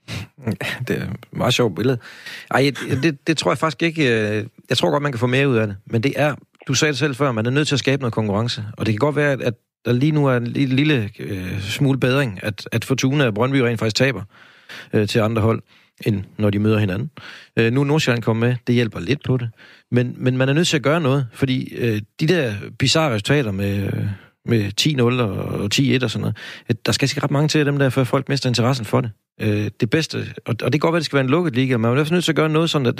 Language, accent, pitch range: Danish, native, 110-135 Hz